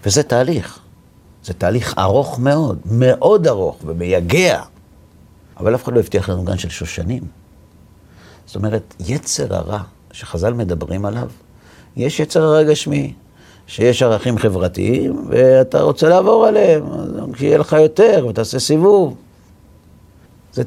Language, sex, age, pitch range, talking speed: Hebrew, male, 50-69, 90-130 Hz, 120 wpm